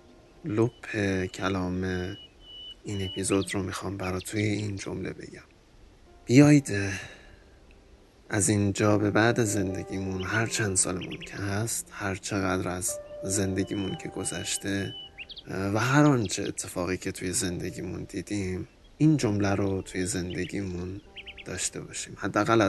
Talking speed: 115 wpm